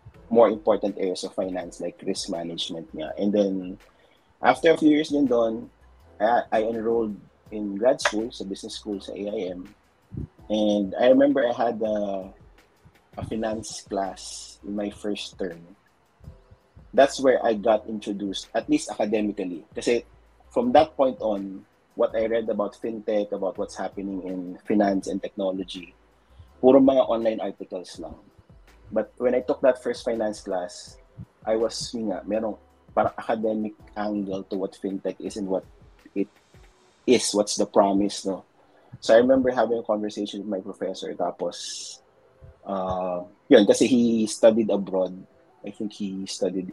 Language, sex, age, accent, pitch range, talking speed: Filipino, male, 30-49, native, 95-110 Hz, 150 wpm